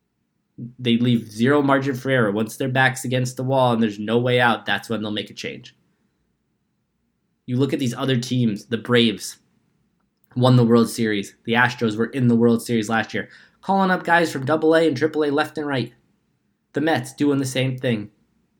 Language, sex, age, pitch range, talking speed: English, male, 20-39, 115-130 Hz, 195 wpm